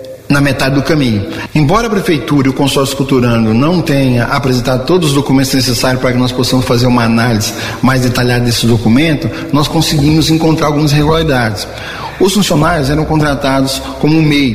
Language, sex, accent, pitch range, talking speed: Portuguese, male, Brazilian, 130-170 Hz, 165 wpm